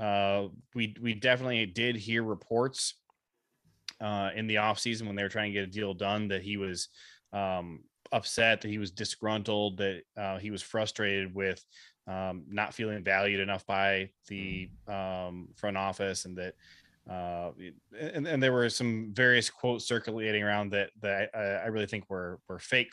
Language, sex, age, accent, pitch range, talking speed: English, male, 20-39, American, 100-120 Hz, 175 wpm